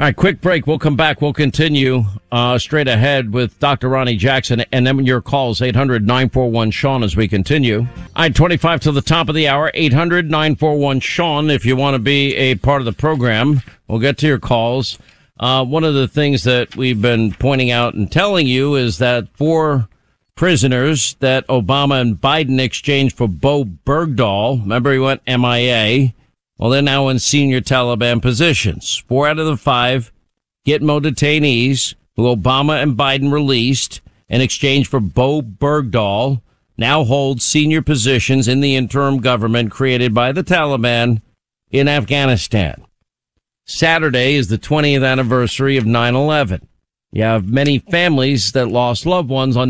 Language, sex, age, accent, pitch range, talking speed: English, male, 50-69, American, 120-145 Hz, 165 wpm